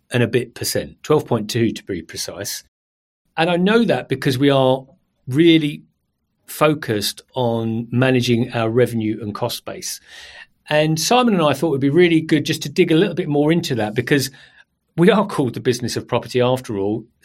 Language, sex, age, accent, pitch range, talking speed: English, male, 40-59, British, 115-155 Hz, 180 wpm